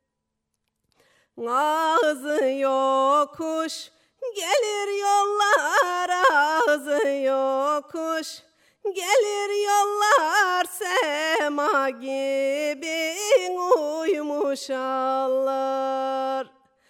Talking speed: 45 wpm